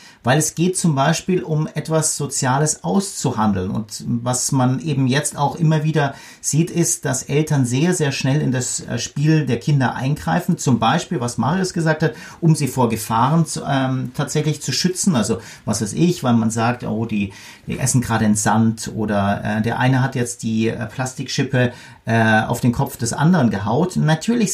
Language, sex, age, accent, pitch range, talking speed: German, male, 40-59, German, 125-160 Hz, 185 wpm